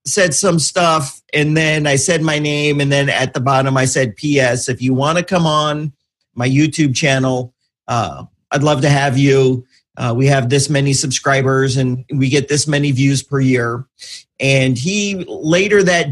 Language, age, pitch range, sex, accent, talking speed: English, 40-59, 135-175 Hz, male, American, 185 wpm